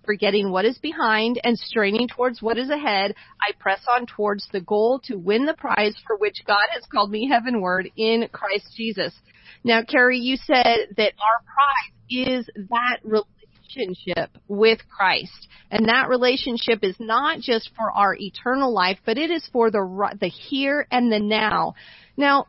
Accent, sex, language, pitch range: American, female, English, 210-265 Hz